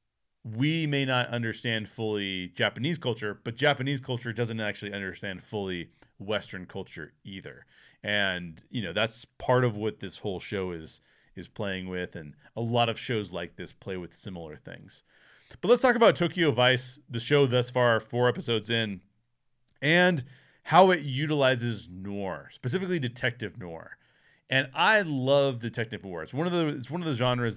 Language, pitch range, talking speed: English, 105-140 Hz, 170 wpm